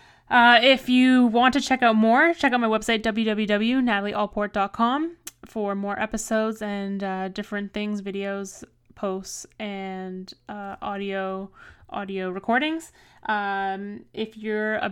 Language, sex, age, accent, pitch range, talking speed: English, female, 10-29, American, 195-220 Hz, 125 wpm